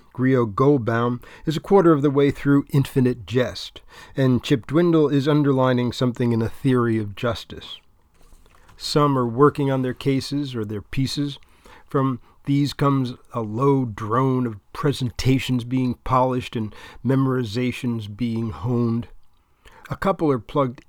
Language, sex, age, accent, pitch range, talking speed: English, male, 50-69, American, 115-145 Hz, 140 wpm